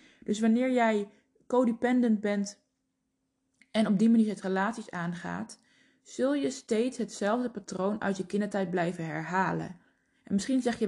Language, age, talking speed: Dutch, 20-39, 145 wpm